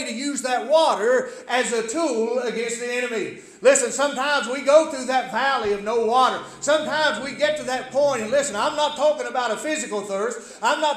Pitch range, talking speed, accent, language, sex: 240-295 Hz, 200 wpm, American, English, male